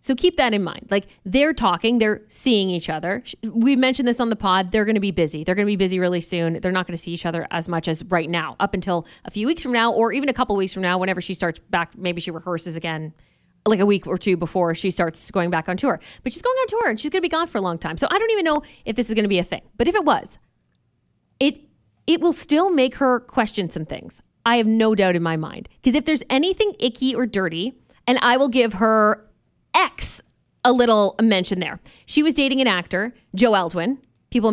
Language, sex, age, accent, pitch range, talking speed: English, female, 20-39, American, 180-260 Hz, 260 wpm